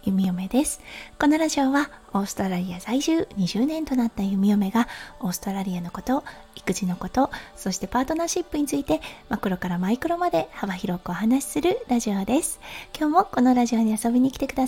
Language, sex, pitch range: Japanese, female, 210-275 Hz